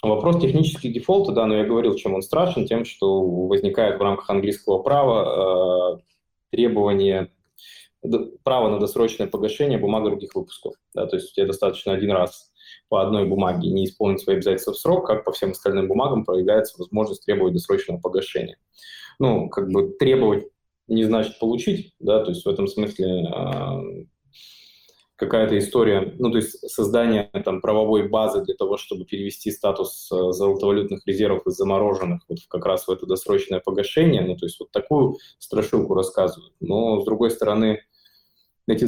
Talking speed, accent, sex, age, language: 160 wpm, native, male, 20-39, Russian